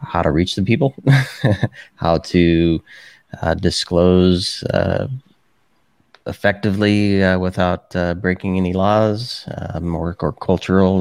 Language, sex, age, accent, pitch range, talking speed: English, male, 30-49, American, 85-100 Hz, 110 wpm